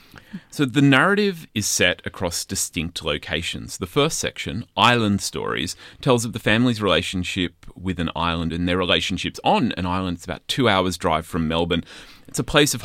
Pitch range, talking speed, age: 90-125 Hz, 175 wpm, 30-49